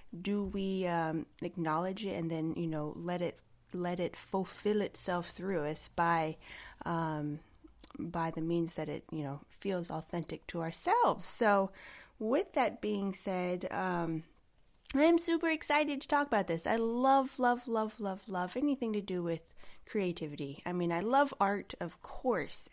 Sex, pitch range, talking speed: female, 170-220 Hz, 165 wpm